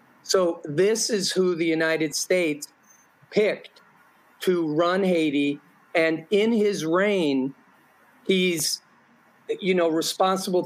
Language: English